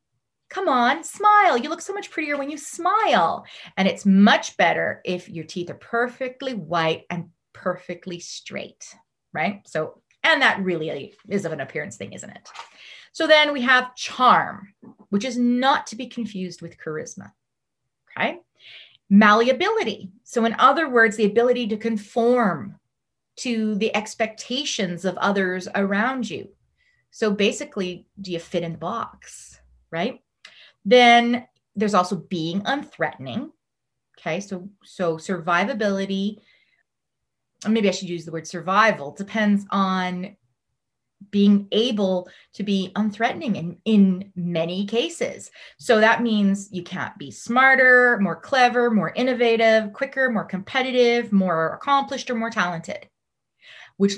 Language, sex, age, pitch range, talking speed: English, female, 30-49, 180-245 Hz, 135 wpm